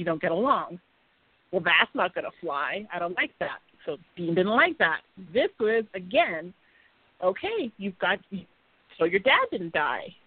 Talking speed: 175 wpm